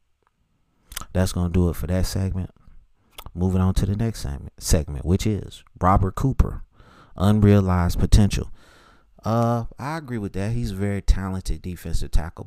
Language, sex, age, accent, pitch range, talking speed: English, male, 30-49, American, 90-120 Hz, 150 wpm